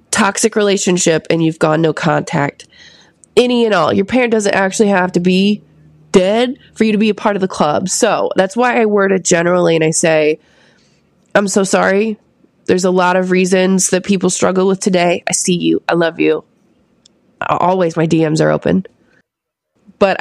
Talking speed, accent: 185 wpm, American